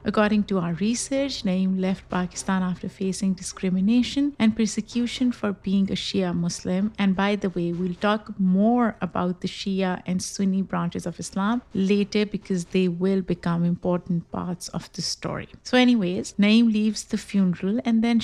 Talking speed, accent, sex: 165 wpm, Indian, female